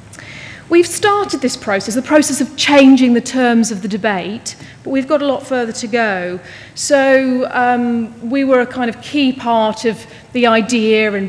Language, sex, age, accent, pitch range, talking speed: English, female, 40-59, British, 215-260 Hz, 180 wpm